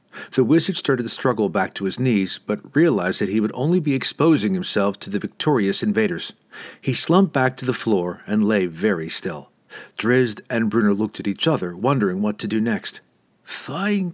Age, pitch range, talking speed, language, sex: 50-69, 110-180 Hz, 190 wpm, English, male